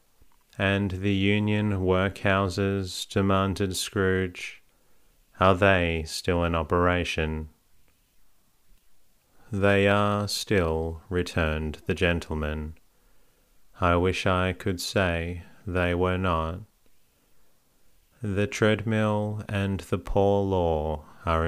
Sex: male